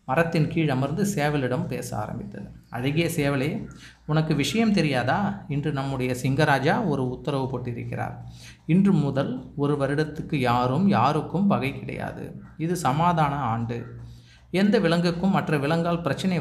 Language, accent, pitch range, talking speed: Tamil, native, 130-170 Hz, 120 wpm